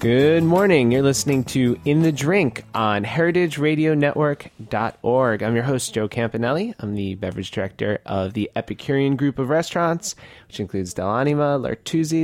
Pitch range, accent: 105-145 Hz, American